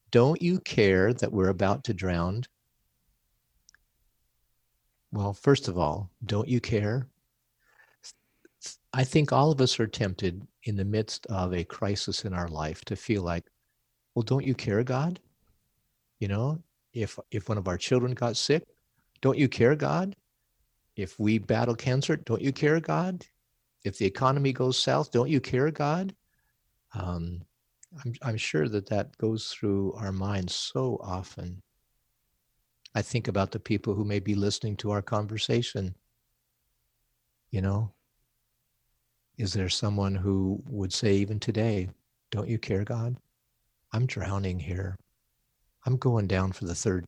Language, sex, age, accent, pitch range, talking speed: English, male, 50-69, American, 100-125 Hz, 150 wpm